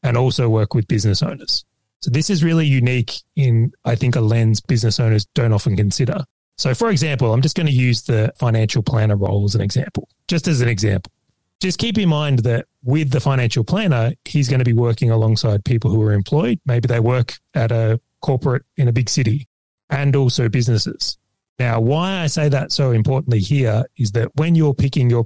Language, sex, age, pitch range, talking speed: English, male, 30-49, 110-135 Hz, 205 wpm